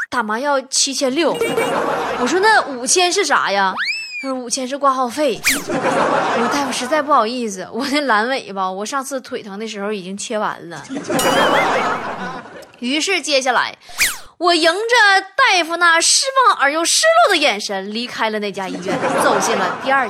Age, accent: 20-39, native